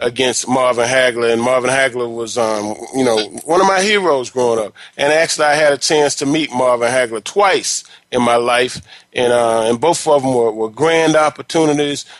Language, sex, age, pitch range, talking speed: English, male, 30-49, 125-175 Hz, 195 wpm